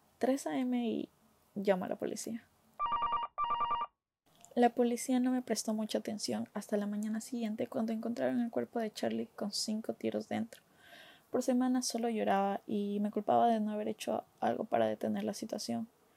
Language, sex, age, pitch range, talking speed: Spanish, female, 10-29, 205-240 Hz, 165 wpm